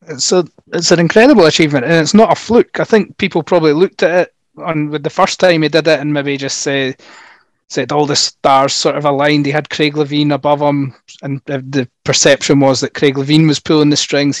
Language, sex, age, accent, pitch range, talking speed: English, male, 30-49, British, 140-160 Hz, 215 wpm